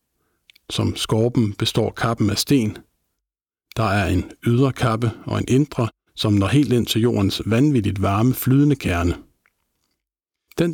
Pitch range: 105-125 Hz